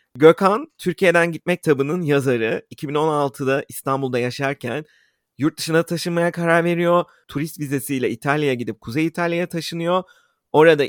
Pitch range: 135-175 Hz